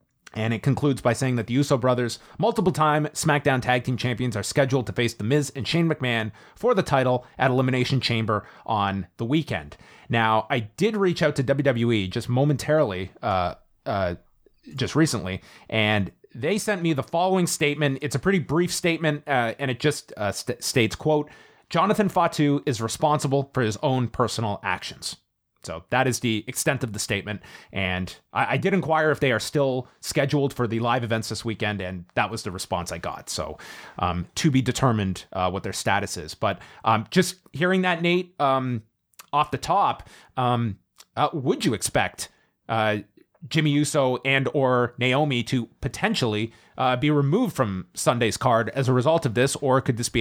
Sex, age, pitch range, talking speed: male, 30-49, 110-145 Hz, 185 wpm